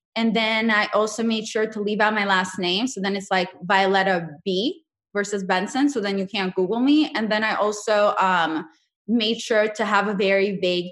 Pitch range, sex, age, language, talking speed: 185-225 Hz, female, 20-39, English, 210 wpm